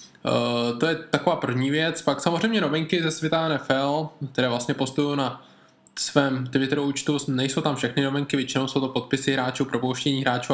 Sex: male